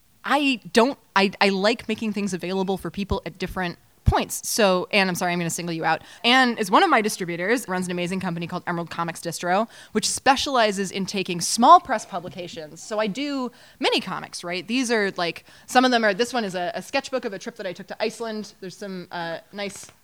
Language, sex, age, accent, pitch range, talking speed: English, female, 20-39, American, 180-225 Hz, 225 wpm